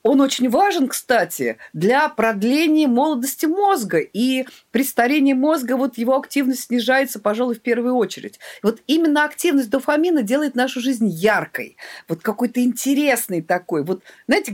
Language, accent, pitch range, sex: Russian, native, 225-300 Hz, female